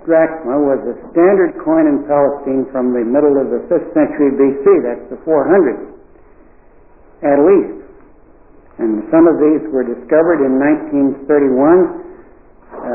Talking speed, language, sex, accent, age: 125 wpm, English, male, American, 70-89